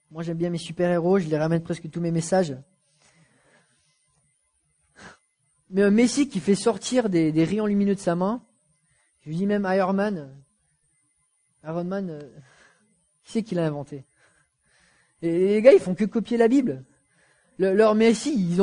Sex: male